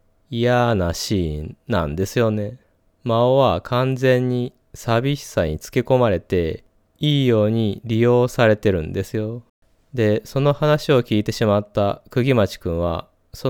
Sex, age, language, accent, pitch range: male, 20-39, Japanese, native, 95-130 Hz